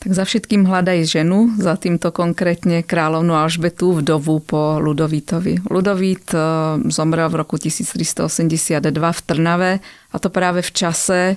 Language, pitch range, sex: Slovak, 155-175 Hz, female